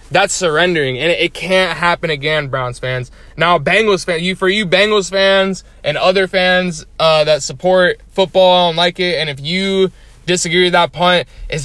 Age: 20-39